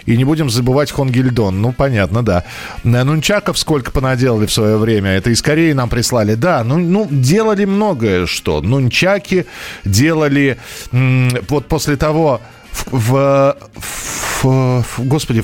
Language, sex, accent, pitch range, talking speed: Russian, male, native, 110-155 Hz, 145 wpm